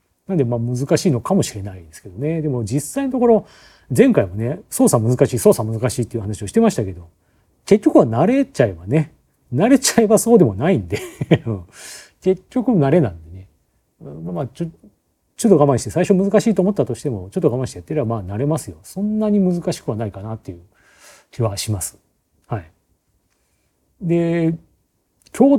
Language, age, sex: Japanese, 40-59, male